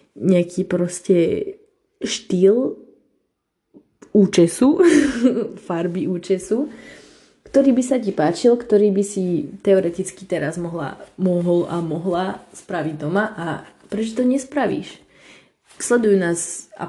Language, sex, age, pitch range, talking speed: Slovak, female, 20-39, 170-205 Hz, 100 wpm